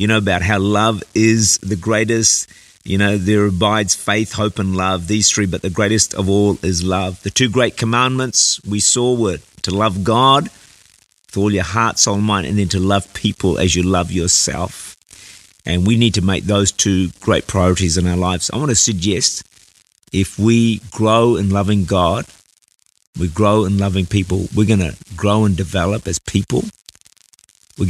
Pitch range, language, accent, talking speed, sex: 95-110 Hz, English, Australian, 185 wpm, male